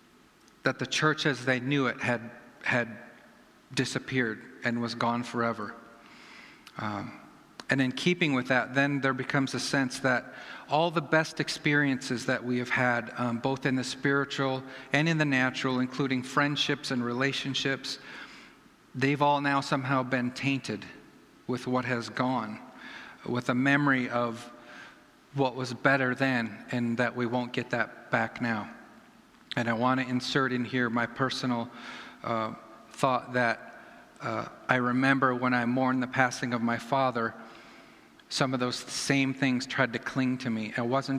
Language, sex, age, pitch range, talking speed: English, male, 50-69, 120-135 Hz, 155 wpm